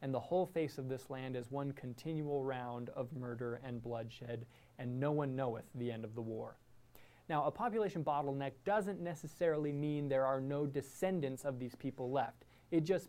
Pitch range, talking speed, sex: 130-170 Hz, 190 wpm, male